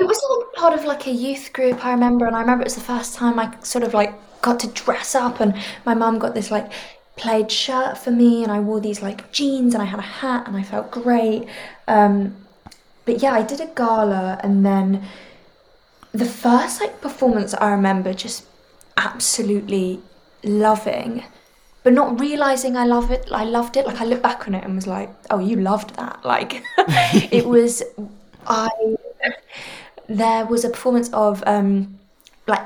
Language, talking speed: English, 185 wpm